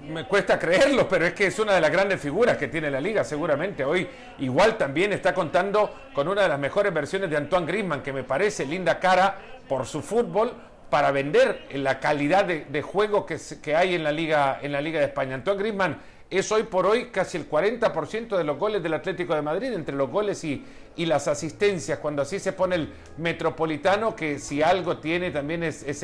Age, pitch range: 50-69, 150-195 Hz